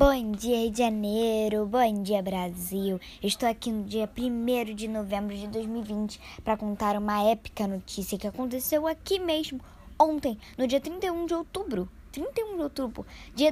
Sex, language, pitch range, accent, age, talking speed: male, Portuguese, 210-305 Hz, Brazilian, 10-29, 155 wpm